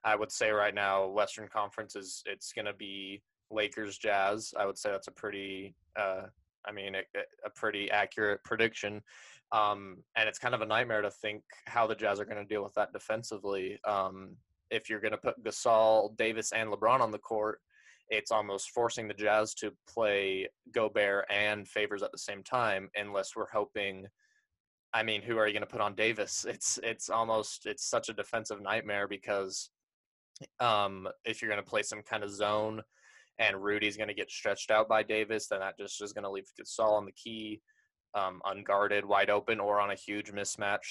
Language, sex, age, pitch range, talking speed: English, male, 20-39, 100-110 Hz, 190 wpm